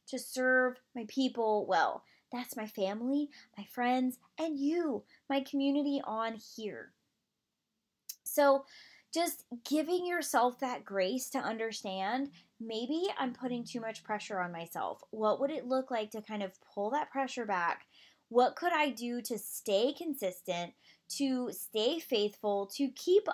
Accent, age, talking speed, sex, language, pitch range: American, 20-39, 145 wpm, female, English, 210-275 Hz